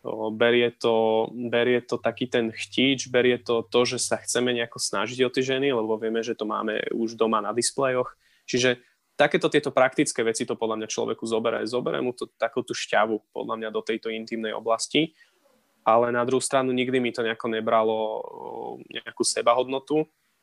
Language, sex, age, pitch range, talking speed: Slovak, male, 20-39, 115-130 Hz, 165 wpm